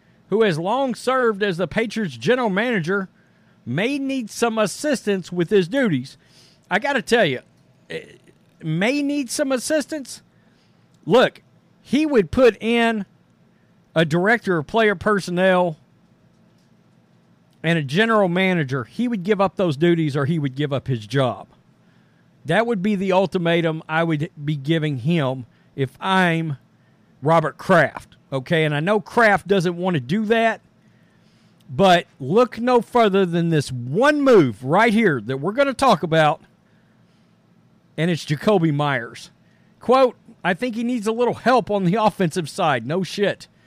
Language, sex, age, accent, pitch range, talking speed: English, male, 50-69, American, 165-230 Hz, 150 wpm